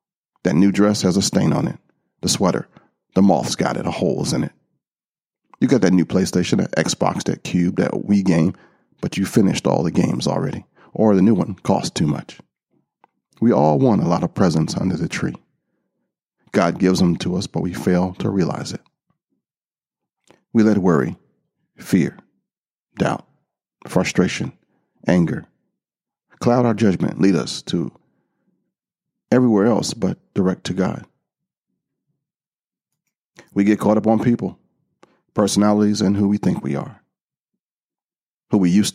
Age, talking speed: 40-59, 155 wpm